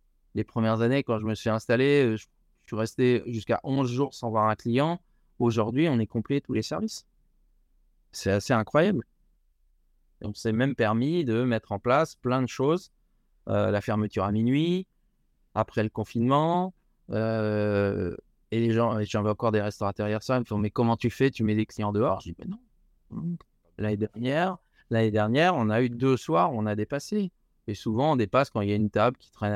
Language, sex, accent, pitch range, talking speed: French, male, French, 105-125 Hz, 205 wpm